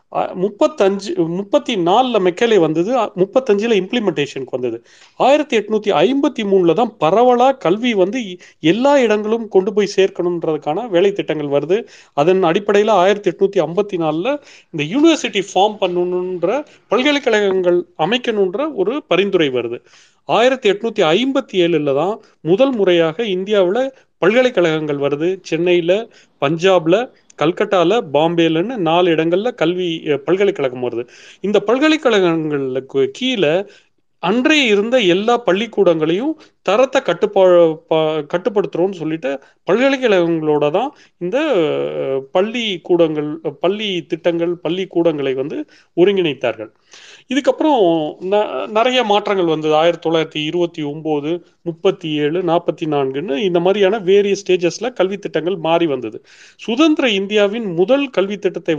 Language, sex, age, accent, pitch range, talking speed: Tamil, male, 40-59, native, 160-215 Hz, 105 wpm